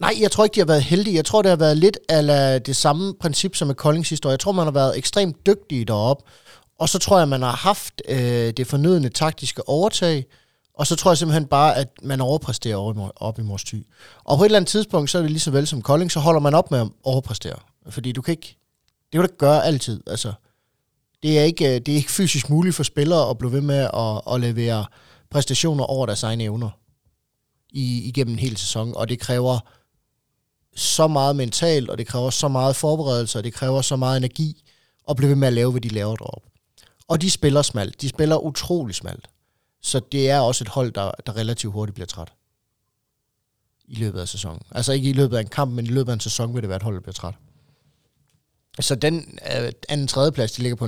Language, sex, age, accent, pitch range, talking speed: Danish, male, 30-49, native, 115-150 Hz, 230 wpm